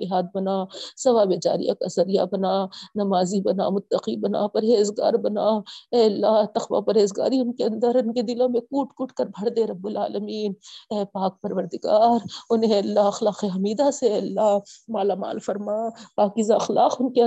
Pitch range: 205-260 Hz